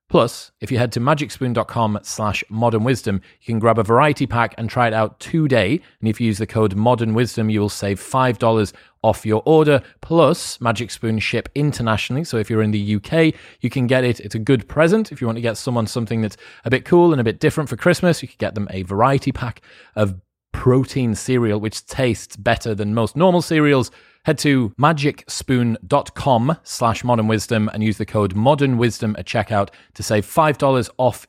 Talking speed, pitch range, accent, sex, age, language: 195 wpm, 105-135 Hz, British, male, 30-49, English